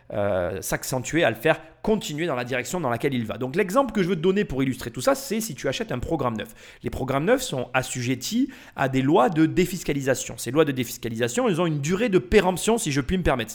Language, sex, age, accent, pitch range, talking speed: French, male, 30-49, French, 125-195 Hz, 250 wpm